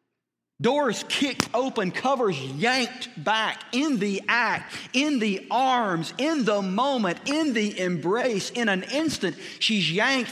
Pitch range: 150-235 Hz